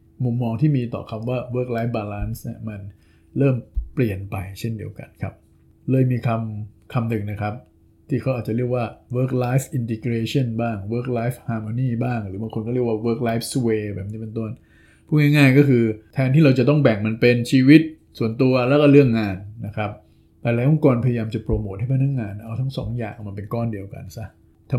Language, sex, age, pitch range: Thai, male, 20-39, 110-130 Hz